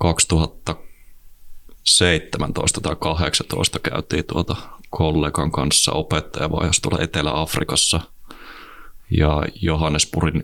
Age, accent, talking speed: 20-39, native, 65 wpm